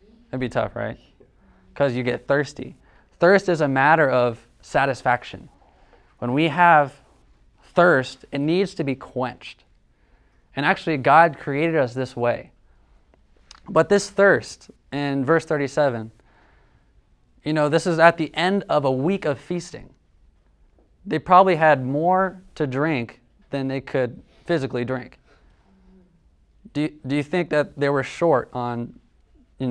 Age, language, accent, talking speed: 20-39, English, American, 140 wpm